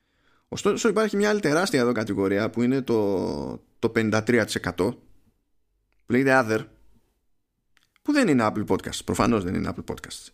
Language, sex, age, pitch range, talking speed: Greek, male, 20-39, 105-145 Hz, 145 wpm